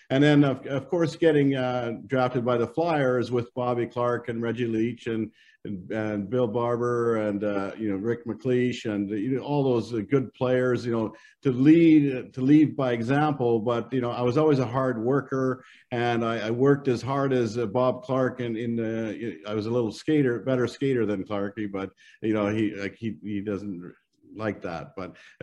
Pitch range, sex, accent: 110-130 Hz, male, American